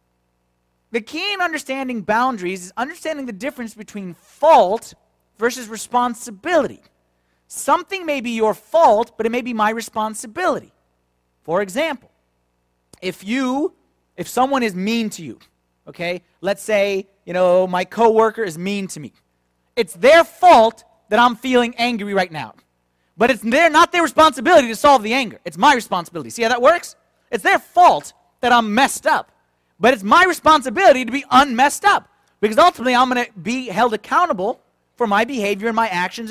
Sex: male